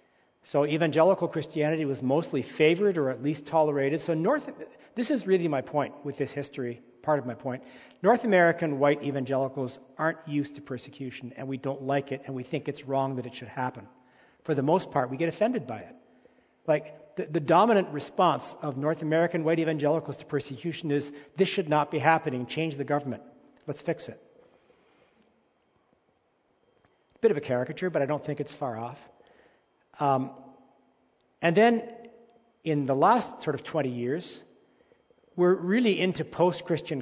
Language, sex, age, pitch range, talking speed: English, male, 50-69, 135-165 Hz, 170 wpm